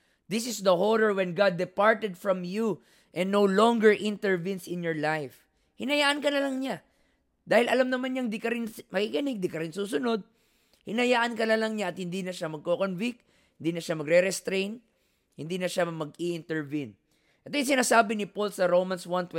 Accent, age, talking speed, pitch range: Filipino, 20-39, 185 wpm, 180-230 Hz